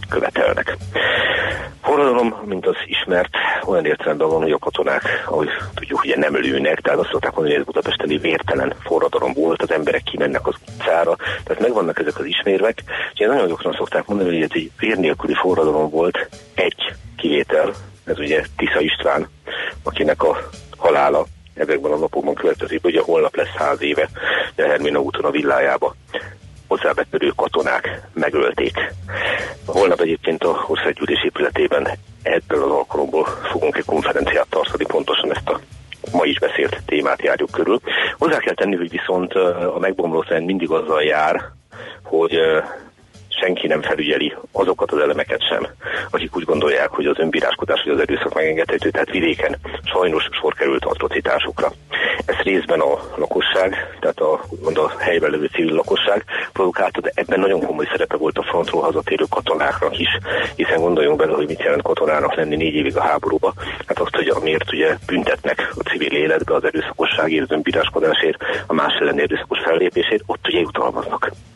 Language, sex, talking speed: Hungarian, male, 155 wpm